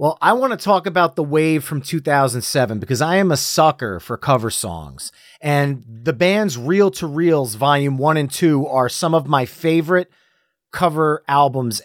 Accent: American